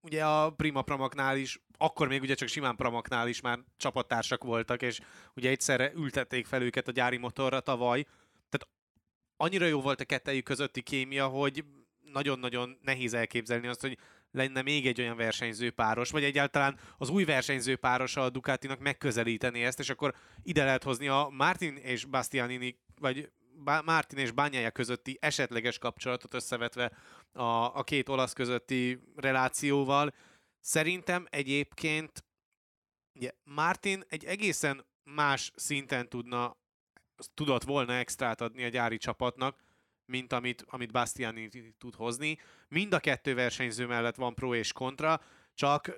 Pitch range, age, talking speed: 125-145 Hz, 20-39, 140 wpm